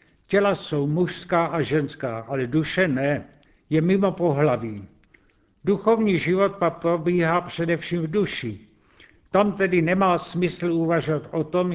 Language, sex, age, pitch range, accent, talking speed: Czech, male, 70-89, 145-180 Hz, native, 130 wpm